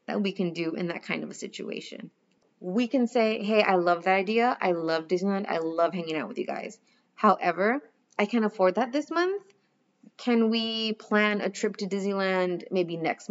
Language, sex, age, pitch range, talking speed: English, female, 20-39, 180-230 Hz, 200 wpm